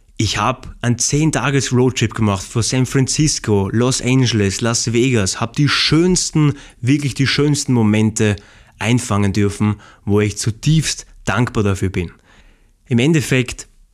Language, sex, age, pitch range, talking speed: German, male, 20-39, 105-130 Hz, 135 wpm